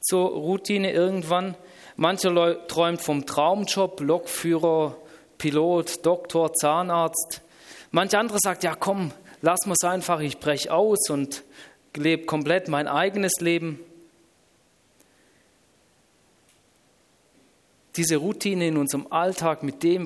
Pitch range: 145-185 Hz